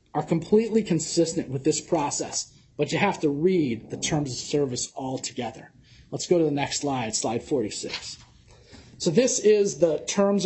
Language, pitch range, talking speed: English, 150-185 Hz, 170 wpm